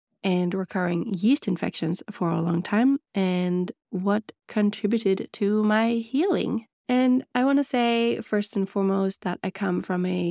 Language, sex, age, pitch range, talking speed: English, female, 20-39, 180-215 Hz, 155 wpm